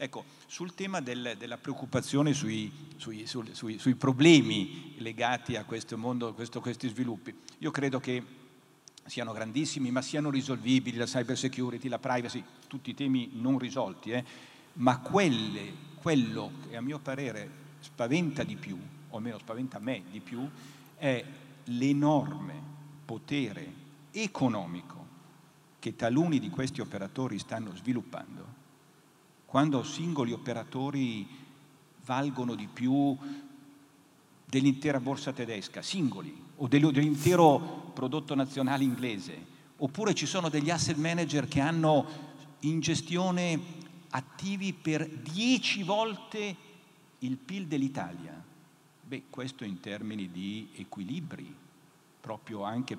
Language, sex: Italian, male